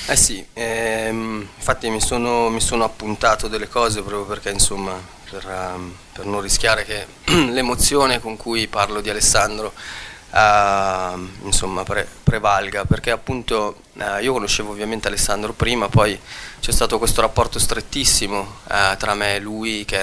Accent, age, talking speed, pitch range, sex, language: native, 20-39, 155 wpm, 95-110 Hz, male, Italian